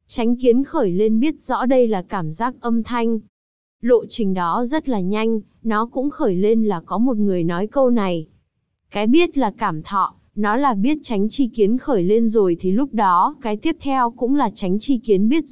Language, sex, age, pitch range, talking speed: Vietnamese, female, 20-39, 195-245 Hz, 215 wpm